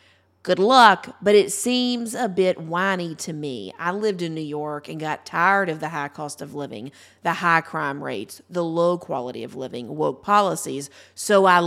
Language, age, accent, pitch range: English, 40-59, American, 155-215 Hz